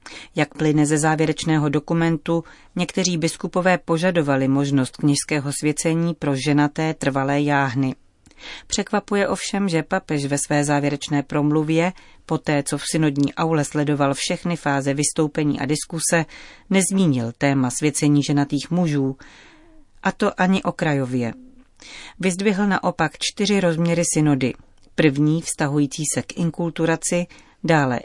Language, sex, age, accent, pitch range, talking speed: Czech, female, 40-59, native, 145-175 Hz, 120 wpm